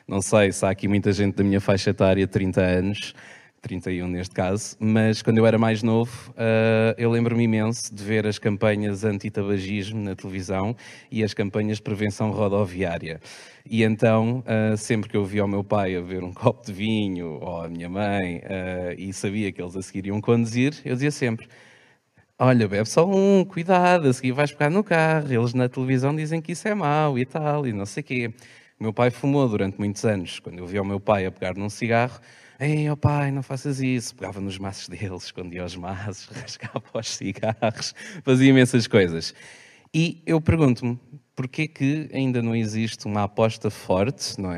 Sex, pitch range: male, 95-125 Hz